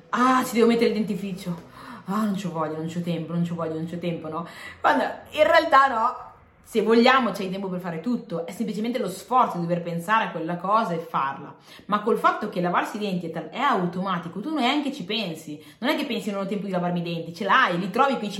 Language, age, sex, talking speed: Italian, 20-39, female, 250 wpm